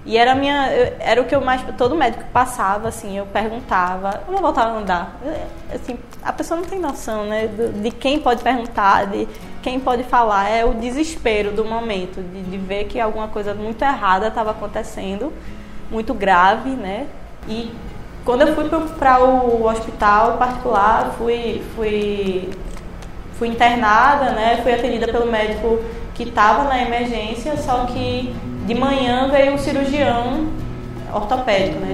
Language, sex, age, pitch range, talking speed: Portuguese, female, 20-39, 210-255 Hz, 150 wpm